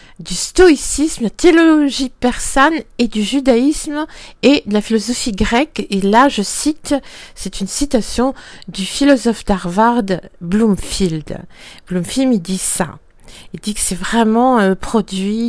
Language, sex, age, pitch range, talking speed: French, female, 50-69, 205-290 Hz, 140 wpm